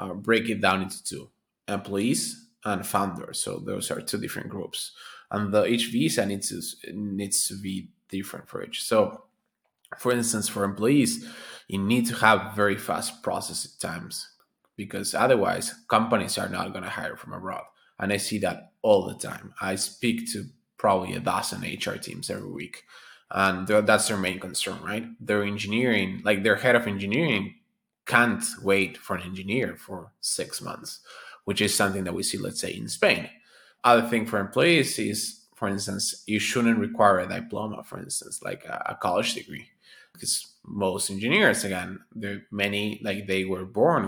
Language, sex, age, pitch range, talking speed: English, male, 20-39, 100-120 Hz, 170 wpm